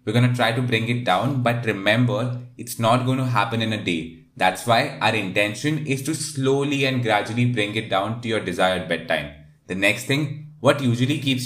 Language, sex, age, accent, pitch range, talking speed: English, male, 20-39, Indian, 110-130 Hz, 210 wpm